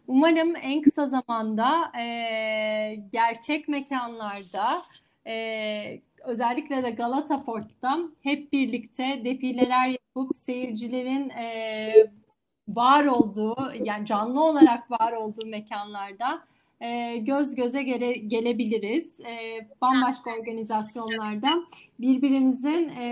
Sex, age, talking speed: female, 30-49, 85 wpm